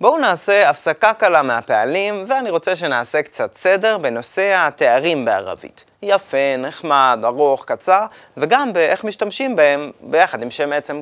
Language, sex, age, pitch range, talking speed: Hebrew, male, 20-39, 140-205 Hz, 135 wpm